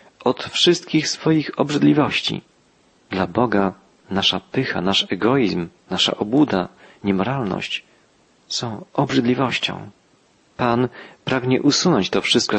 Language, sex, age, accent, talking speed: Polish, male, 40-59, native, 95 wpm